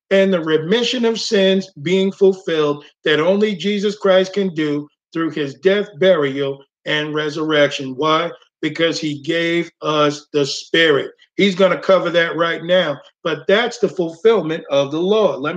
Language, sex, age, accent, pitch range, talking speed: English, male, 50-69, American, 170-230 Hz, 155 wpm